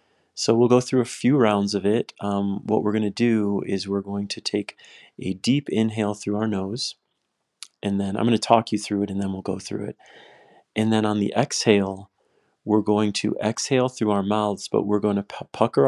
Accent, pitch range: American, 100-110 Hz